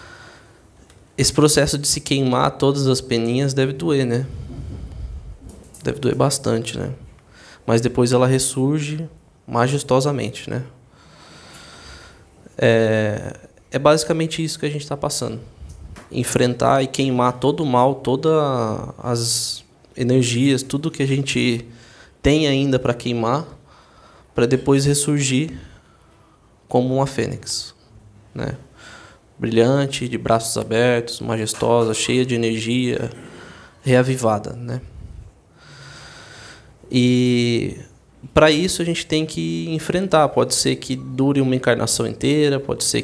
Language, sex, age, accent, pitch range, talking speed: Portuguese, male, 20-39, Brazilian, 115-140 Hz, 115 wpm